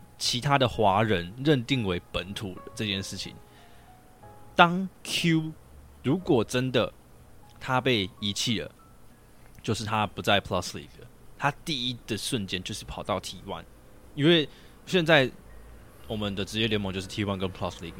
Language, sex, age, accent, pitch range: Chinese, male, 20-39, native, 95-130 Hz